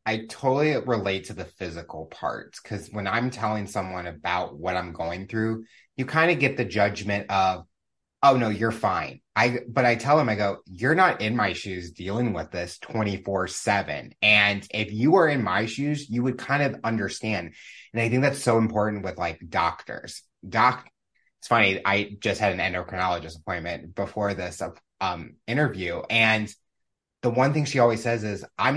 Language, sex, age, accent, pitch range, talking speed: English, male, 30-49, American, 95-120 Hz, 185 wpm